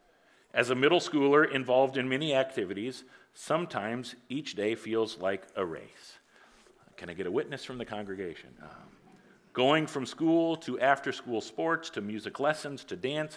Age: 50-69